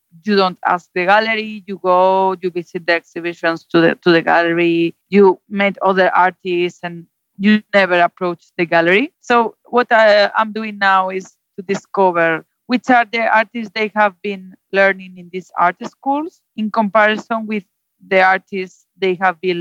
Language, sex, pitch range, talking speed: English, female, 170-200 Hz, 170 wpm